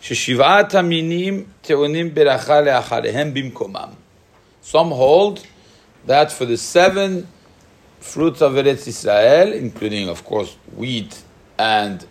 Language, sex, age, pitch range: English, male, 60-79, 115-180 Hz